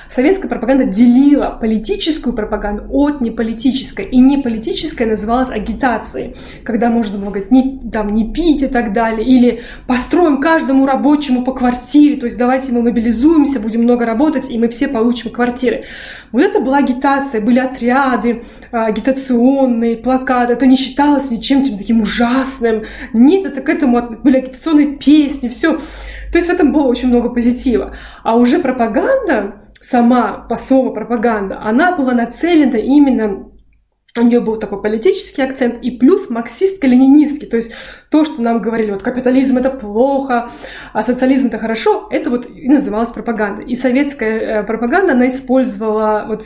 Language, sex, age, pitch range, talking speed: Russian, female, 20-39, 230-275 Hz, 150 wpm